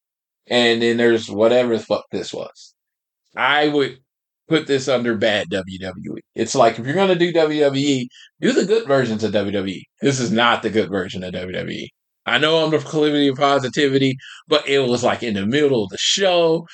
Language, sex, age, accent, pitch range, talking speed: English, male, 20-39, American, 115-145 Hz, 195 wpm